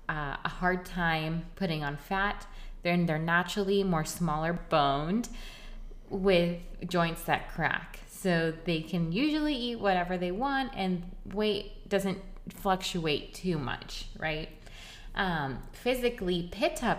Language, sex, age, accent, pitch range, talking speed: English, female, 20-39, American, 165-200 Hz, 125 wpm